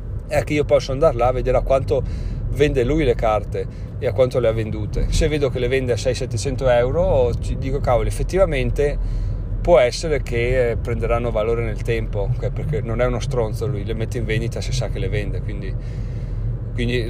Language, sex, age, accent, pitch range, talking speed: Italian, male, 30-49, native, 110-130 Hz, 195 wpm